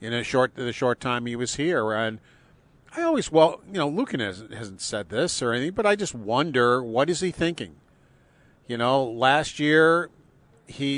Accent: American